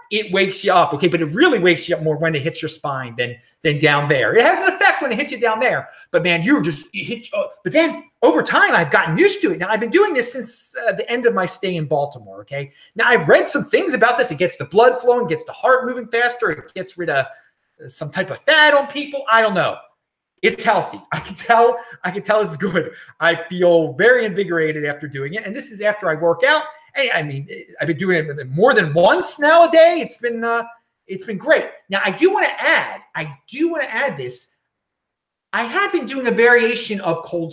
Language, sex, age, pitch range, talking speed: English, male, 30-49, 160-255 Hz, 245 wpm